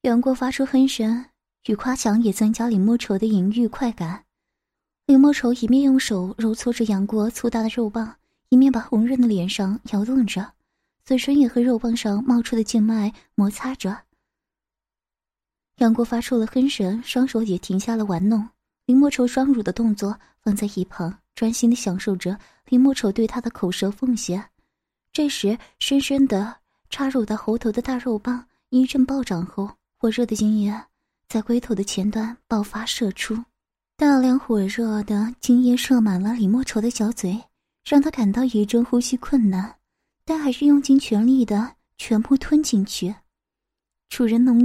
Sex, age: female, 20-39